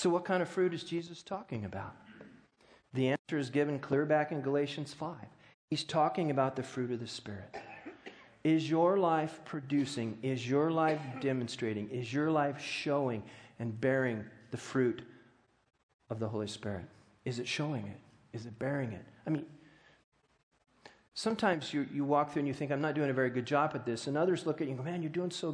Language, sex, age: English, male, 40-59